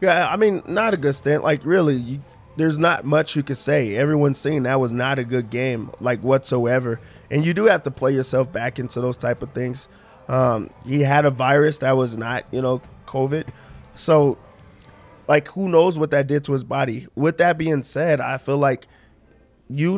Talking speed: 200 wpm